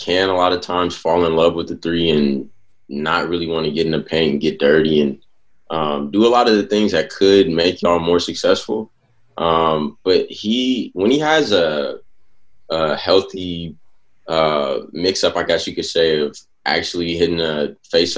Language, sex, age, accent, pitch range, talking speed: English, male, 20-39, American, 80-95 Hz, 195 wpm